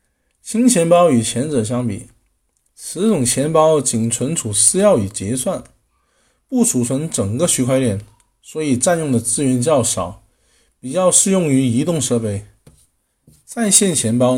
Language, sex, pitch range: Chinese, male, 115-165 Hz